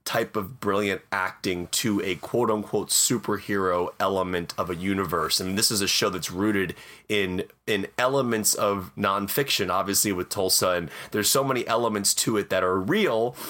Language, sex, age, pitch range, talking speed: English, male, 30-49, 95-115 Hz, 165 wpm